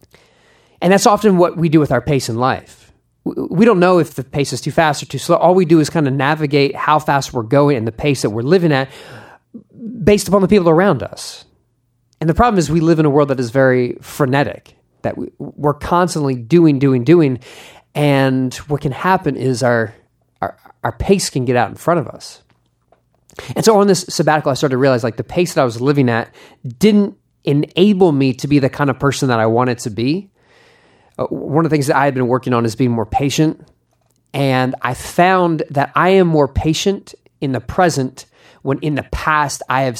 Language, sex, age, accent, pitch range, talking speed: English, male, 30-49, American, 130-170 Hz, 215 wpm